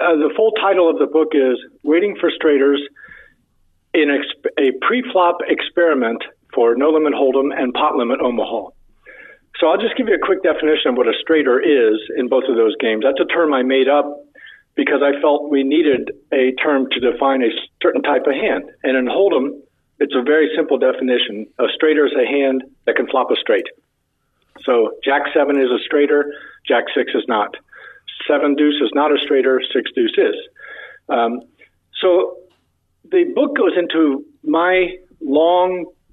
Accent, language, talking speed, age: American, English, 175 wpm, 50-69